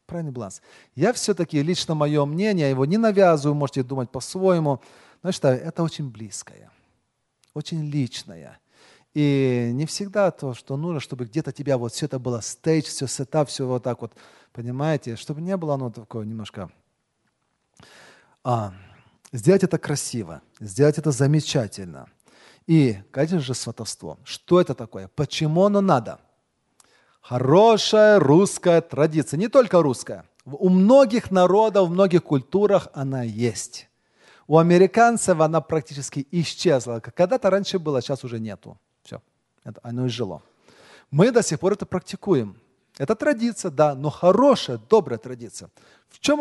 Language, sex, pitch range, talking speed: Russian, male, 125-185 Hz, 140 wpm